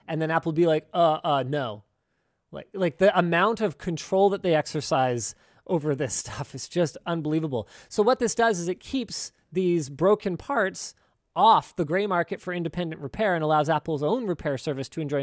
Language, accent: English, American